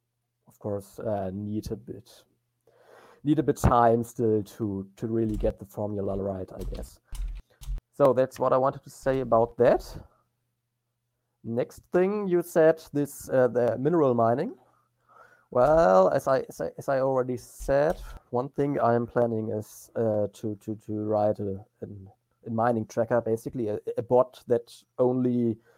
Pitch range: 105-120 Hz